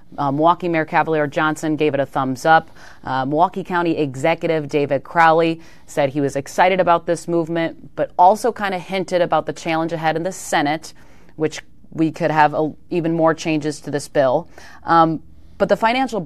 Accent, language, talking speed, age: American, English, 185 wpm, 30-49